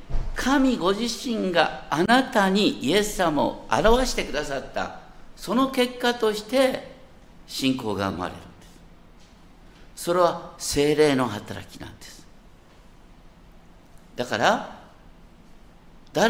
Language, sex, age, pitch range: Japanese, male, 60-79, 135-225 Hz